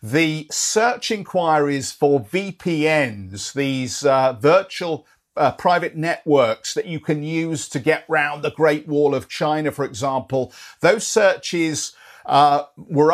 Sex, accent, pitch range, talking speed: male, British, 140-170 Hz, 135 wpm